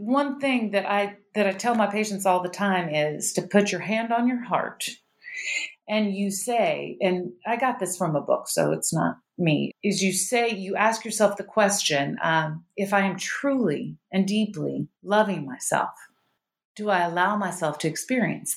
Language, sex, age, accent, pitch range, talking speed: English, female, 40-59, American, 185-240 Hz, 185 wpm